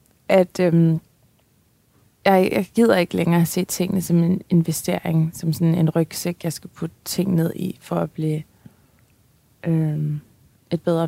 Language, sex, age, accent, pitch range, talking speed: Danish, female, 20-39, native, 160-180 Hz, 150 wpm